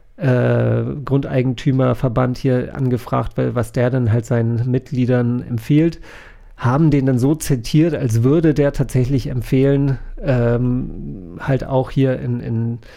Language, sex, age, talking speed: German, male, 40-59, 125 wpm